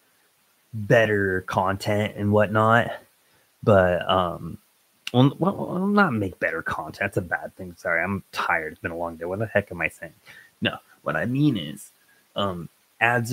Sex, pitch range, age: male, 100-125 Hz, 20-39